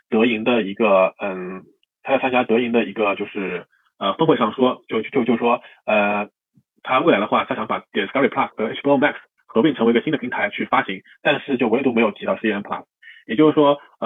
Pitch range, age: 110-130 Hz, 20-39